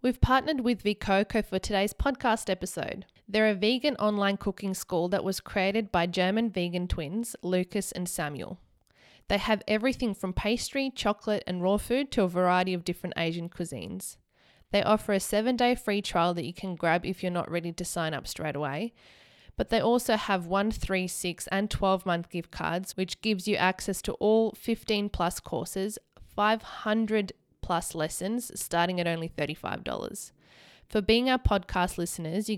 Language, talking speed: English, 170 wpm